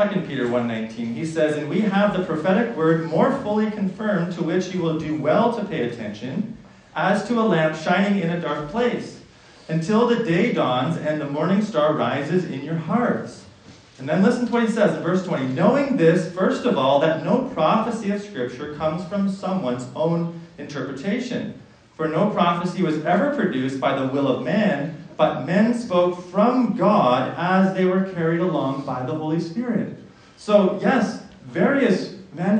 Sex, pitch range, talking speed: male, 155-205 Hz, 180 wpm